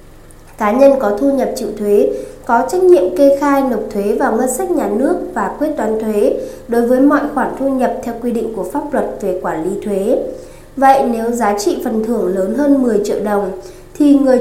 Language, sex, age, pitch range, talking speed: Vietnamese, female, 20-39, 205-275 Hz, 215 wpm